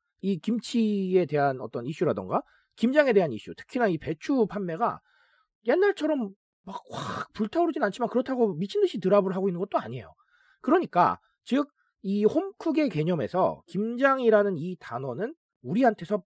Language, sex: Korean, male